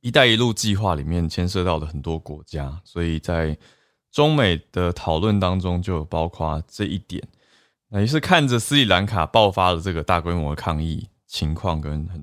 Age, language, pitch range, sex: 20-39, Chinese, 80-105 Hz, male